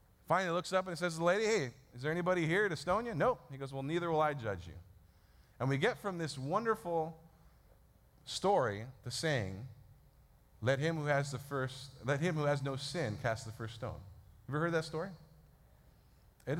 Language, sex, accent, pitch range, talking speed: English, male, American, 125-175 Hz, 200 wpm